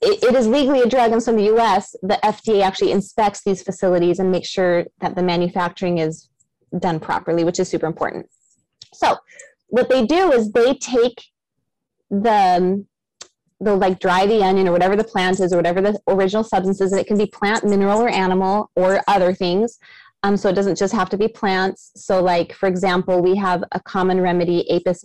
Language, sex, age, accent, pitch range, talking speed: English, female, 30-49, American, 180-215 Hz, 200 wpm